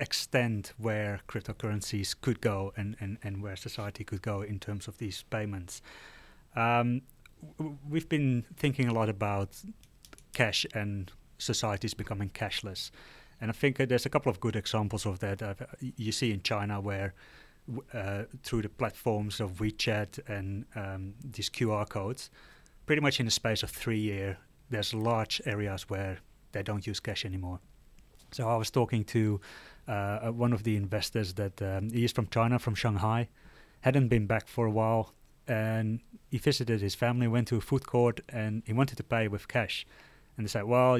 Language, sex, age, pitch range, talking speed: English, male, 30-49, 100-120 Hz, 175 wpm